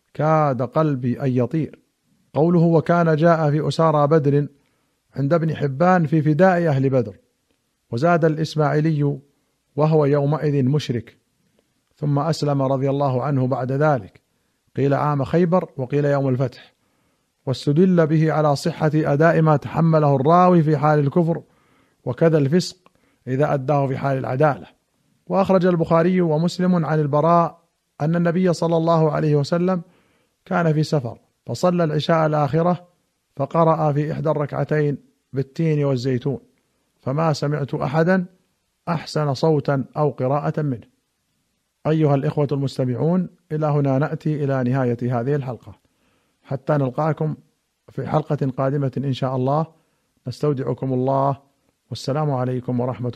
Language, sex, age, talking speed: Arabic, male, 50-69, 120 wpm